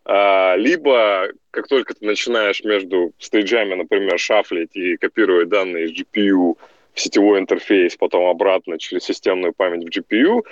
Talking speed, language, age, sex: 135 wpm, Russian, 20-39, male